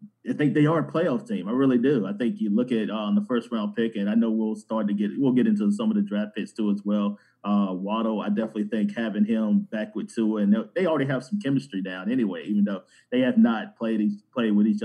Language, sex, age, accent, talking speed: English, male, 30-49, American, 265 wpm